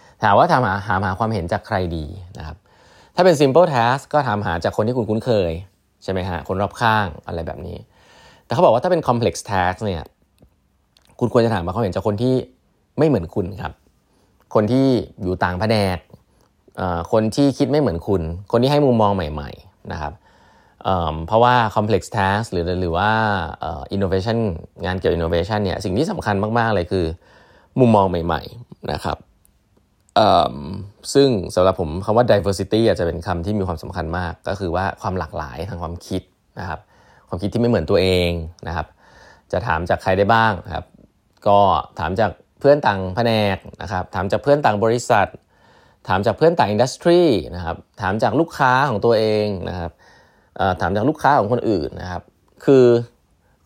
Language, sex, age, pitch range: Thai, male, 20-39, 90-115 Hz